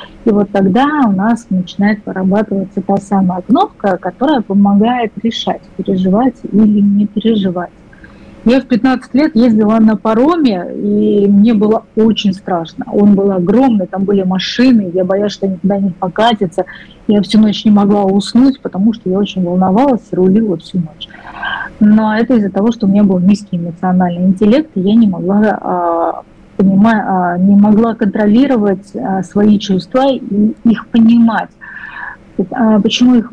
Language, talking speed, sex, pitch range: Russian, 145 wpm, female, 195-230 Hz